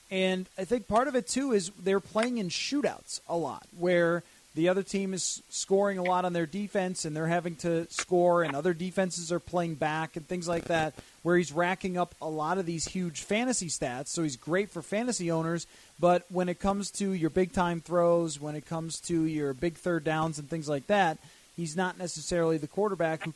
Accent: American